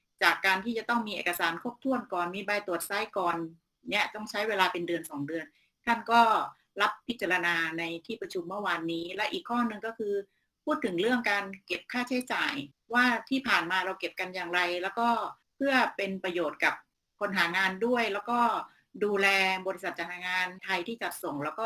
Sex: female